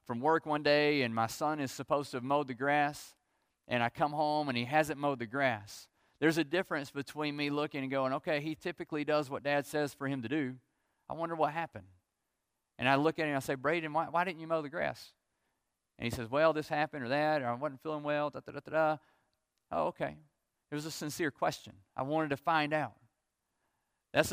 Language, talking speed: English, 230 wpm